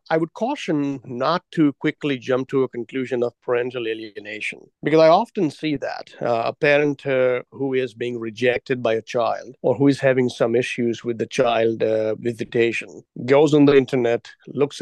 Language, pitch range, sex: English, 125-155 Hz, male